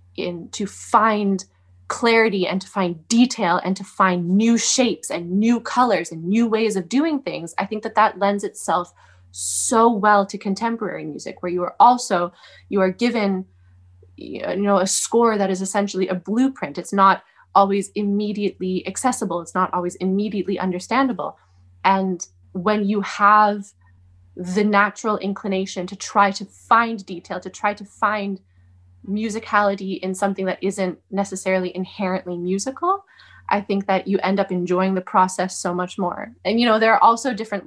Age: 20-39